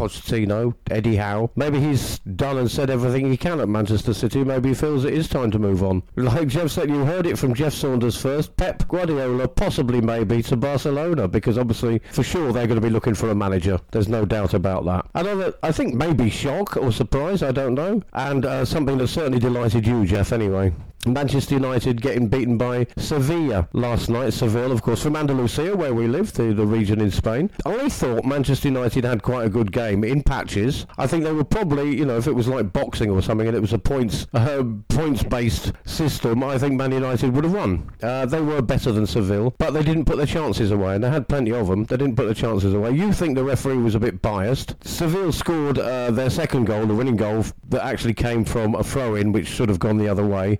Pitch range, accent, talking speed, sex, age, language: 110-140 Hz, British, 230 wpm, male, 40-59, English